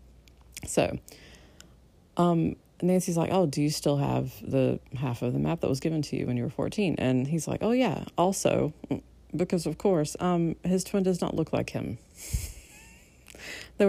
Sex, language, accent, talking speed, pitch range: female, English, American, 175 wpm, 135-175 Hz